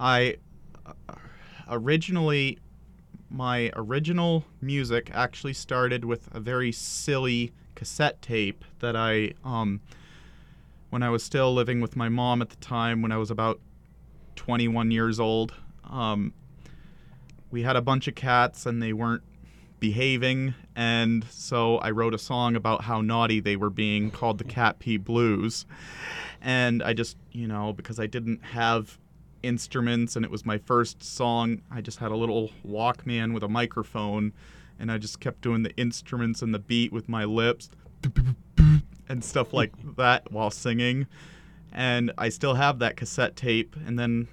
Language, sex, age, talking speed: English, male, 30-49, 155 wpm